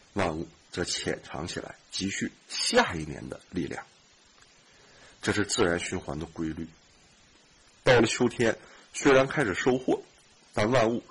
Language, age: Chinese, 50-69